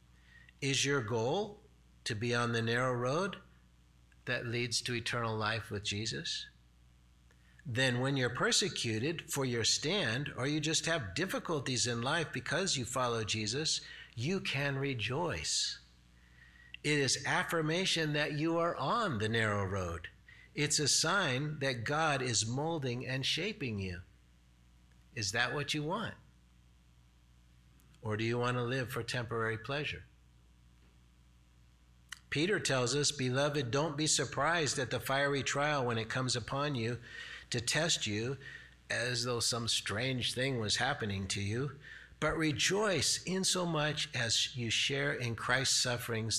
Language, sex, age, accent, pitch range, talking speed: English, male, 60-79, American, 100-135 Hz, 140 wpm